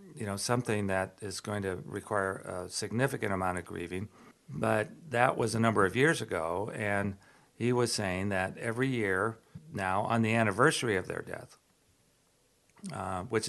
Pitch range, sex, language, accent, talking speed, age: 95-115 Hz, male, English, American, 165 wpm, 50-69